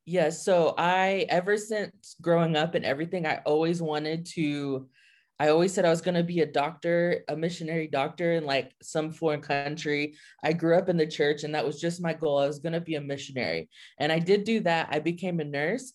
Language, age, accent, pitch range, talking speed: English, 20-39, American, 150-175 Hz, 220 wpm